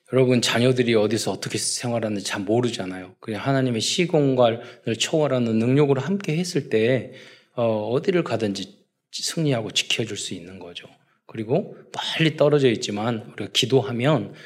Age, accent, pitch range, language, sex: 20-39, native, 110-150 Hz, Korean, male